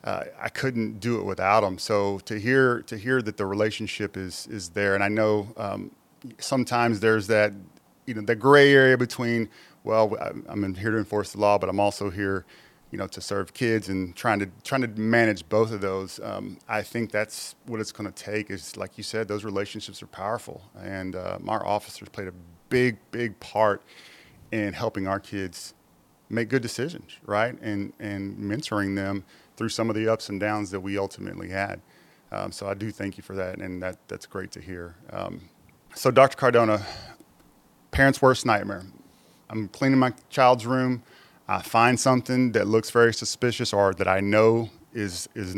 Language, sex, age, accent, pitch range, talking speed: English, male, 30-49, American, 100-115 Hz, 190 wpm